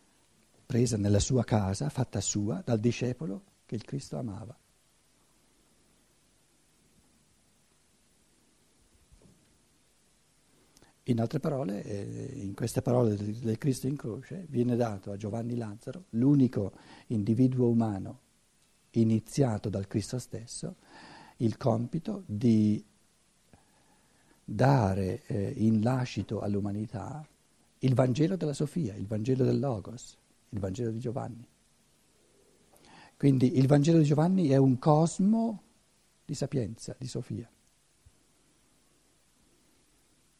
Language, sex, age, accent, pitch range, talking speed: Italian, male, 60-79, native, 110-135 Hz, 100 wpm